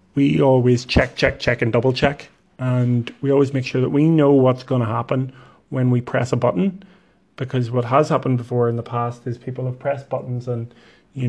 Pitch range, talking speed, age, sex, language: 120-140 Hz, 215 wpm, 30-49, male, English